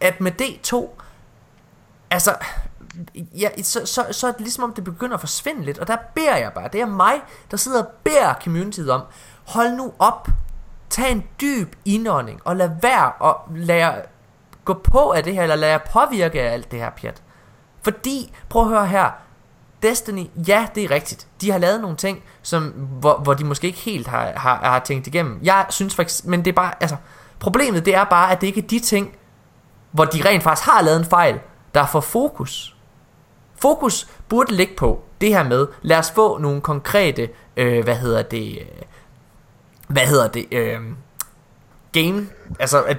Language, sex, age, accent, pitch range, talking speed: Danish, male, 20-39, native, 140-210 Hz, 195 wpm